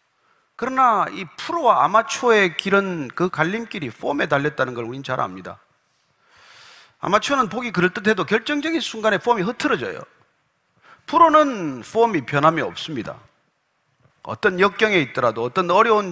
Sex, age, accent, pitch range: male, 40-59, native, 175-250 Hz